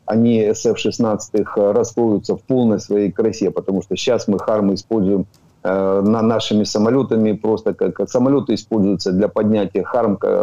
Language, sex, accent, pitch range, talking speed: Ukrainian, male, native, 100-115 Hz, 145 wpm